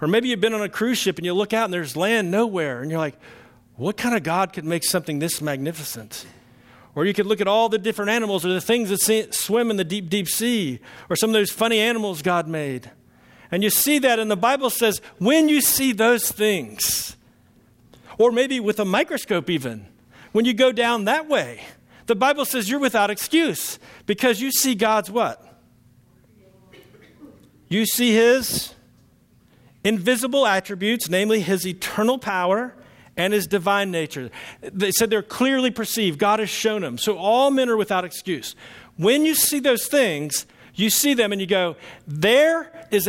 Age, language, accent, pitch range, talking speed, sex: 50-69, English, American, 175-235 Hz, 185 wpm, male